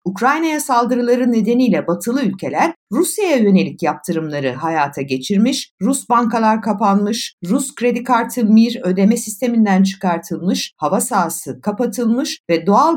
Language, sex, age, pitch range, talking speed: Turkish, female, 60-79, 185-270 Hz, 115 wpm